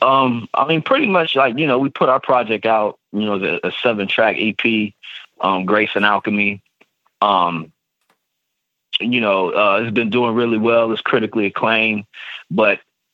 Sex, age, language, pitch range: male, 30-49, English, 100-120 Hz